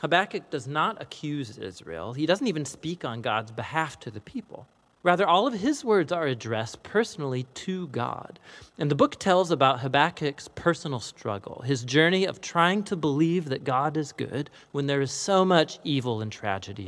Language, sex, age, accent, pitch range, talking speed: English, male, 40-59, American, 120-165 Hz, 180 wpm